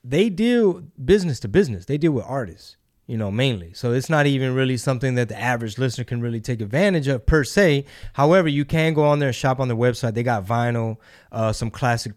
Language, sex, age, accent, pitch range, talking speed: English, male, 20-39, American, 115-145 Hz, 225 wpm